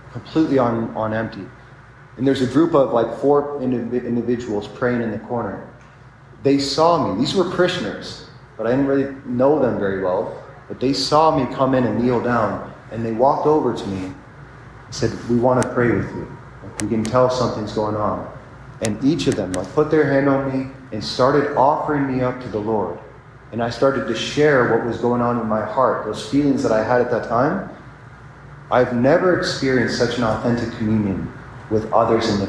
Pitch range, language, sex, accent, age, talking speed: 115-140 Hz, English, male, American, 30-49, 200 wpm